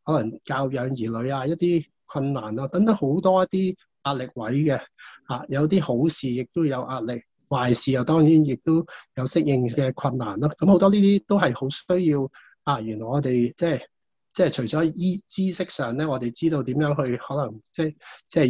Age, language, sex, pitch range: 20-39, Chinese, male, 125-160 Hz